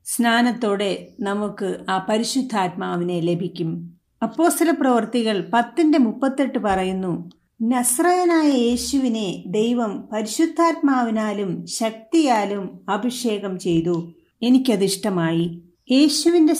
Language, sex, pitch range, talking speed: Malayalam, female, 190-260 Hz, 70 wpm